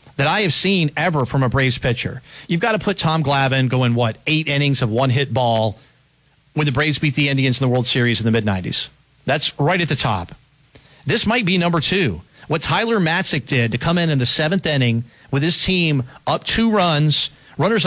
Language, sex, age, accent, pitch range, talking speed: English, male, 40-59, American, 130-175 Hz, 210 wpm